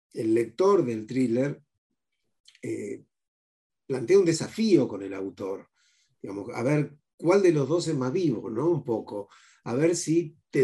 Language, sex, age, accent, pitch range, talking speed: Spanish, male, 40-59, Argentinian, 115-155 Hz, 160 wpm